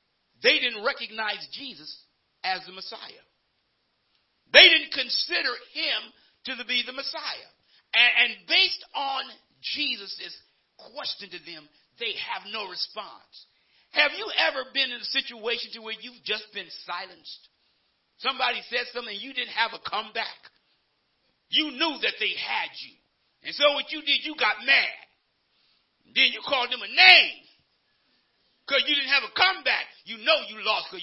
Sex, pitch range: male, 185-270 Hz